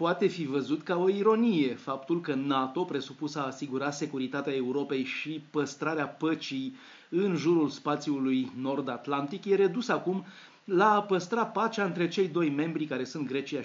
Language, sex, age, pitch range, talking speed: Romanian, male, 30-49, 135-175 Hz, 155 wpm